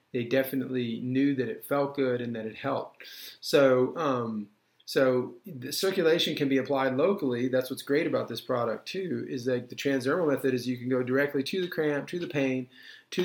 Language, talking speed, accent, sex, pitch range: English, 200 wpm, American, male, 125-145 Hz